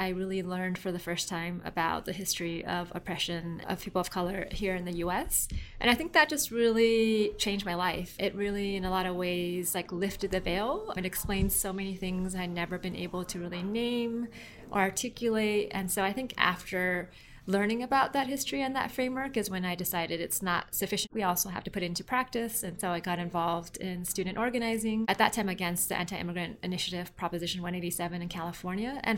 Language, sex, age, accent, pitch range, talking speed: English, female, 20-39, American, 180-220 Hz, 210 wpm